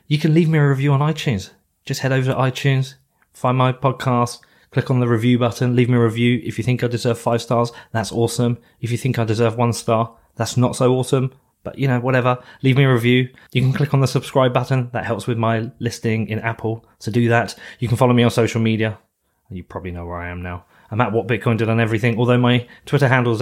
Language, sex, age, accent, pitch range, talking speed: English, male, 20-39, British, 105-125 Hz, 245 wpm